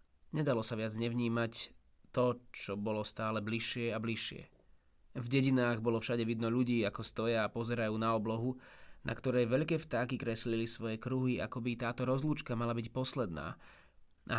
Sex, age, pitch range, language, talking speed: male, 20-39, 110-125 Hz, Slovak, 155 wpm